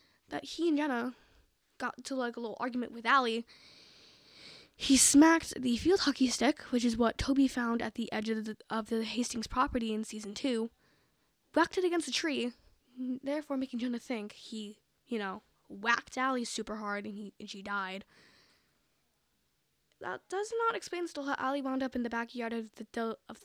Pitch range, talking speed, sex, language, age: 225-280 Hz, 175 wpm, female, English, 10-29